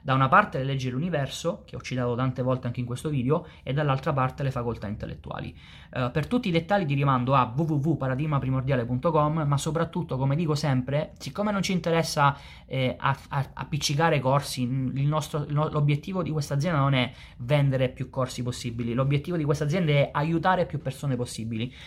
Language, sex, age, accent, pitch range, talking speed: Italian, male, 20-39, native, 130-160 Hz, 165 wpm